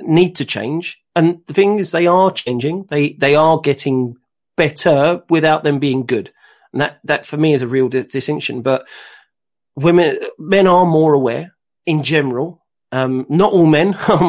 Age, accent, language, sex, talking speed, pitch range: 40-59, British, English, male, 175 wpm, 140-180 Hz